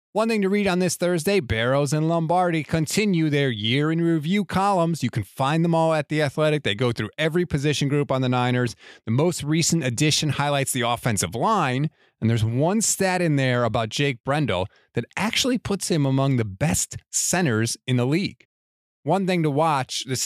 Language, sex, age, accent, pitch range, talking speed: English, male, 30-49, American, 120-165 Hz, 195 wpm